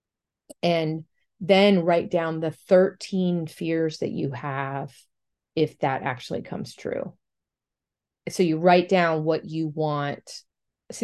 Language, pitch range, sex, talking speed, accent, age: English, 155-190 Hz, female, 125 wpm, American, 40-59